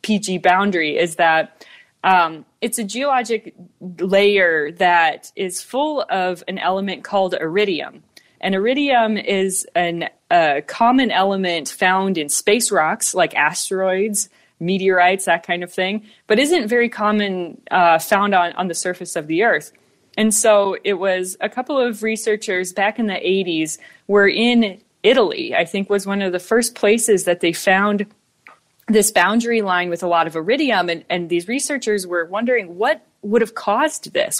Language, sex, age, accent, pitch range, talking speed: English, female, 20-39, American, 180-225 Hz, 160 wpm